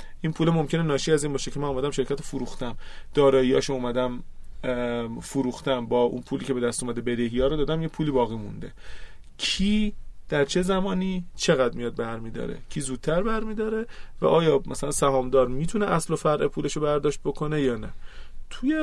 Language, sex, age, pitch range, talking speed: Persian, male, 30-49, 130-165 Hz, 170 wpm